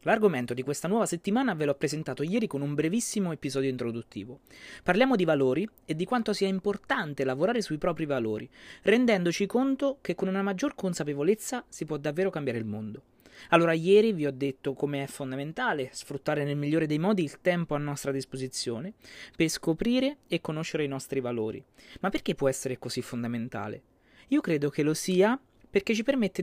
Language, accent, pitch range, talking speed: Italian, native, 140-205 Hz, 175 wpm